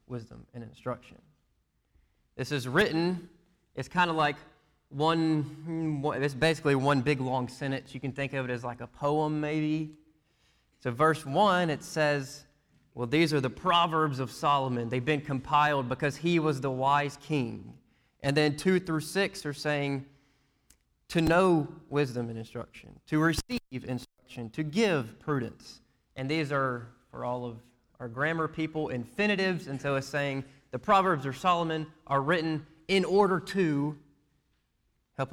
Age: 20-39